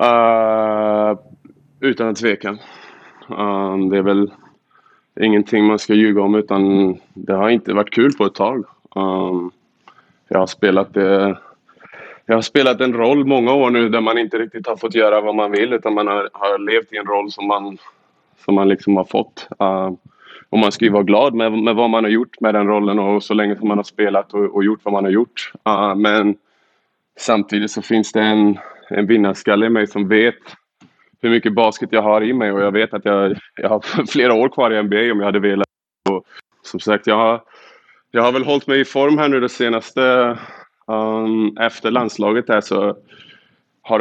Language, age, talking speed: Swedish, 20-39, 190 wpm